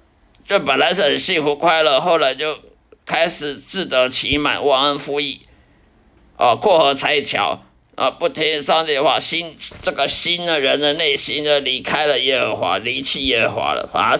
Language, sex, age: Chinese, male, 50-69